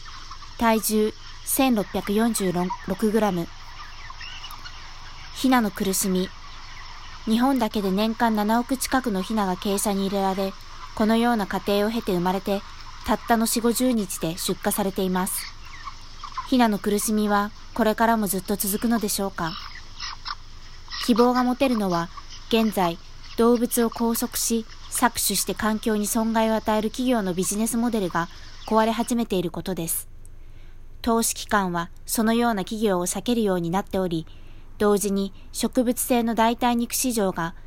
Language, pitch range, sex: Japanese, 185-230 Hz, female